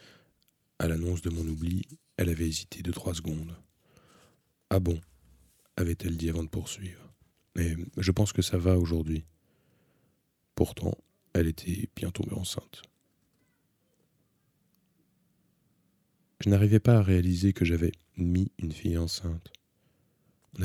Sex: male